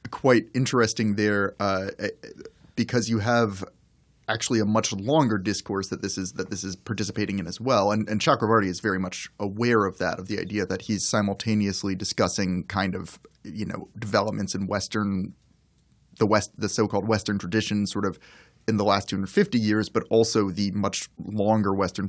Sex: male